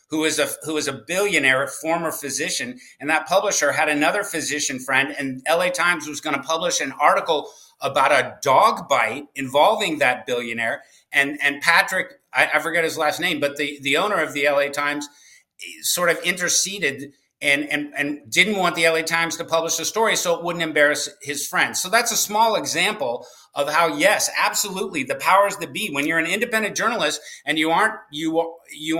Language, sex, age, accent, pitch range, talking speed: English, male, 50-69, American, 150-195 Hz, 195 wpm